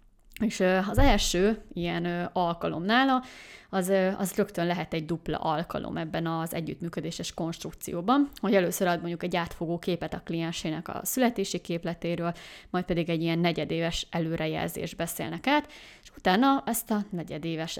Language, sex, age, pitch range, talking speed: Hungarian, female, 20-39, 165-200 Hz, 140 wpm